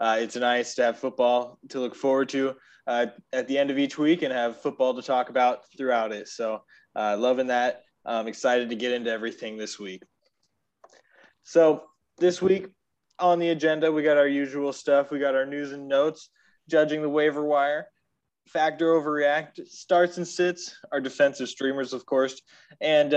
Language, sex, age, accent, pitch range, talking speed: English, male, 20-39, American, 125-150 Hz, 180 wpm